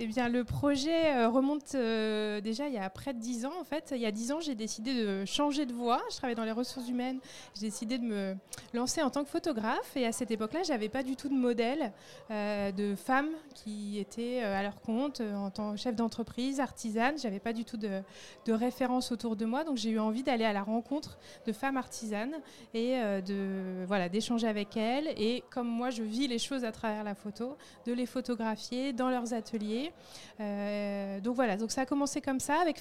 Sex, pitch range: female, 210-255 Hz